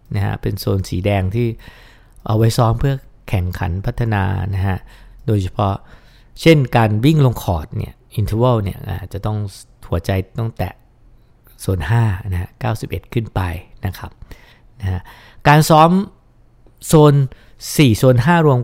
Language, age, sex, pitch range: English, 60-79, male, 95-120 Hz